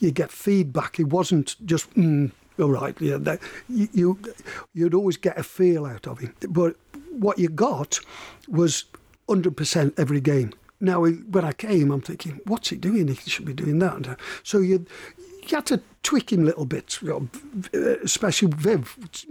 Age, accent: 60-79, British